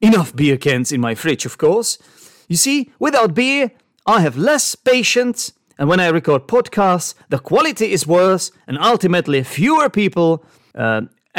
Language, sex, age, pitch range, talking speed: English, male, 40-59, 130-195 Hz, 160 wpm